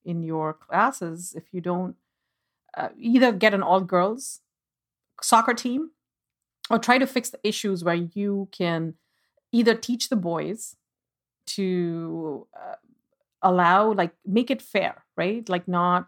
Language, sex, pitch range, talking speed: English, female, 170-220 Hz, 140 wpm